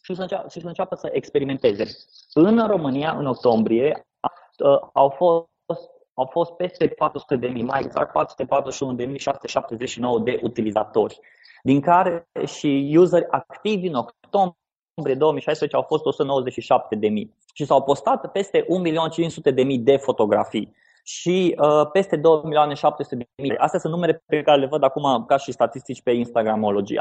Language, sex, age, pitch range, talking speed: Romanian, male, 20-39, 135-180 Hz, 120 wpm